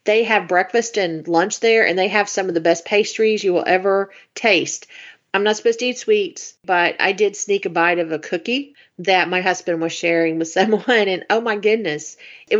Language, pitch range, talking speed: English, 175-235 Hz, 215 wpm